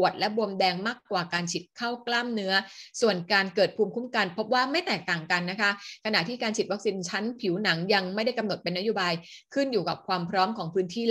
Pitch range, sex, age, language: 195-240 Hz, female, 20-39, Thai